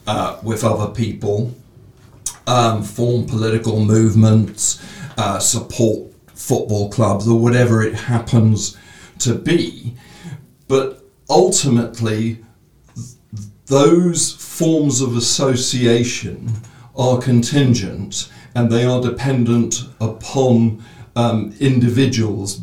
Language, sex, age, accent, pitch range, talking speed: English, male, 50-69, British, 110-130 Hz, 90 wpm